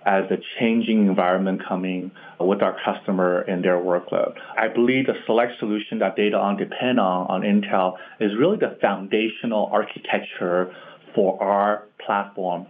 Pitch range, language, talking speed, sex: 100-140 Hz, English, 145 wpm, male